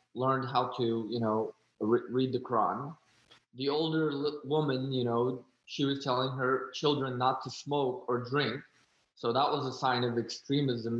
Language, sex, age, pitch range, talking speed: English, male, 20-39, 125-150 Hz, 165 wpm